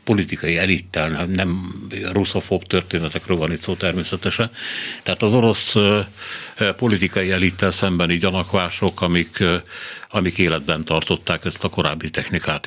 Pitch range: 85-105 Hz